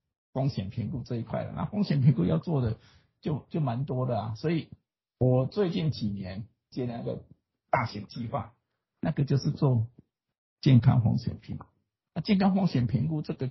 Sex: male